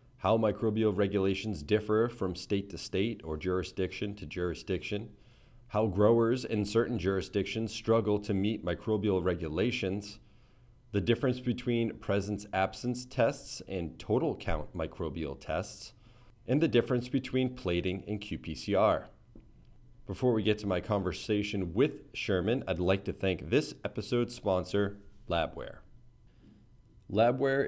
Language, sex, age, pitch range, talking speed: English, male, 40-59, 95-115 Hz, 125 wpm